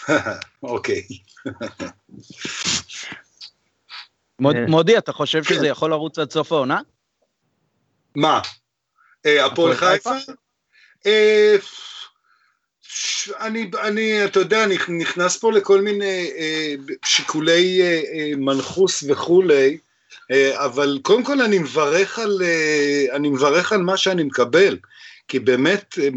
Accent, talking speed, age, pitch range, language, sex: native, 80 wpm, 50-69, 140-210 Hz, Hebrew, male